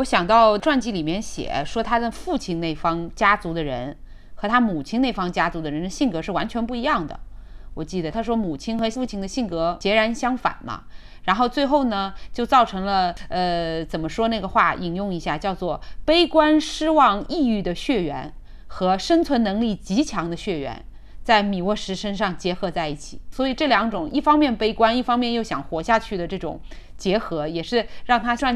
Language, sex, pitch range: Chinese, female, 175-240 Hz